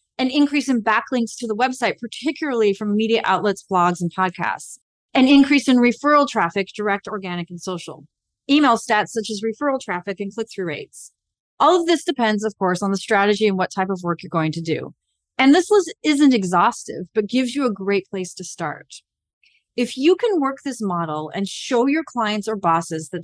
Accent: American